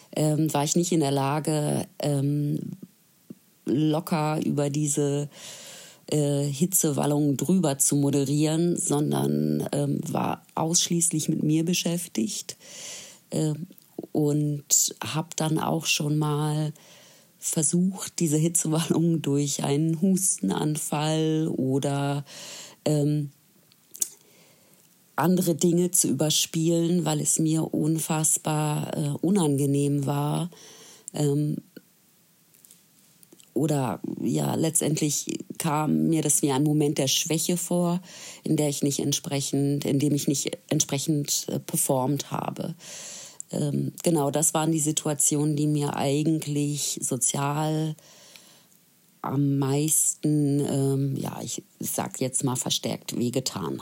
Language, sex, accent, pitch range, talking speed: German, female, German, 145-170 Hz, 105 wpm